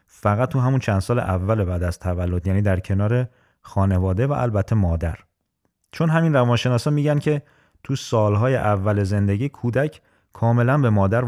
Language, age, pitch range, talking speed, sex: Persian, 30-49, 95-125 Hz, 160 wpm, male